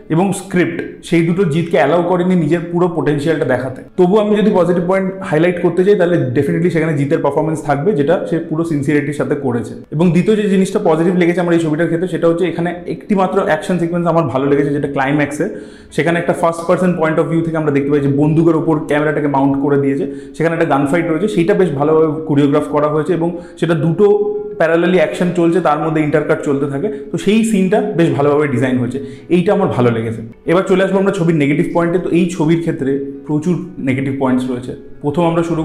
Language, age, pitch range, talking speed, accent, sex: Bengali, 30-49, 145-175 Hz, 200 wpm, native, male